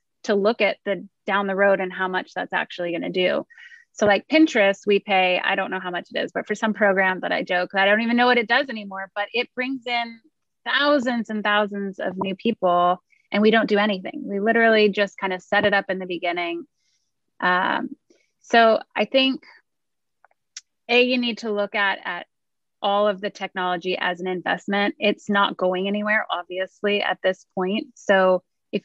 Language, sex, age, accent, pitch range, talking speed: English, female, 20-39, American, 185-230 Hz, 200 wpm